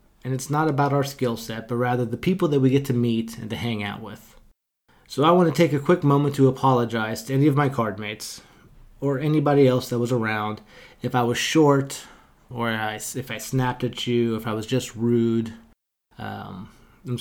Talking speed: 210 wpm